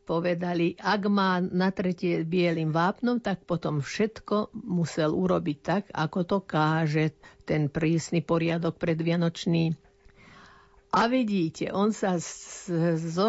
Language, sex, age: Slovak, female, 50-69